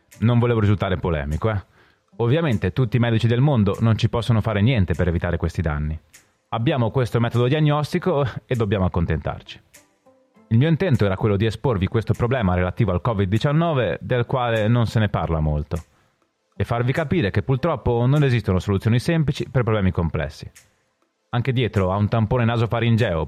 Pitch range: 95-130 Hz